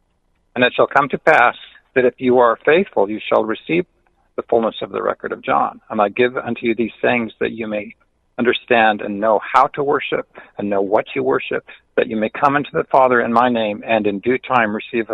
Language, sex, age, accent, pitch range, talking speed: English, male, 50-69, American, 110-130 Hz, 225 wpm